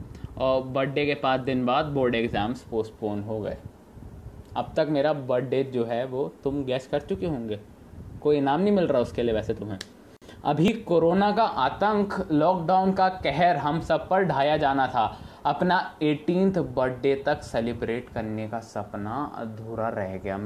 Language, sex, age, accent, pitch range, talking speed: English, male, 20-39, Indian, 110-160 Hz, 155 wpm